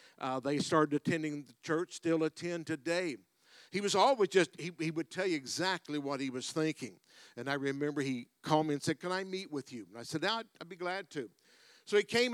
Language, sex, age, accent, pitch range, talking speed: English, male, 60-79, American, 150-185 Hz, 240 wpm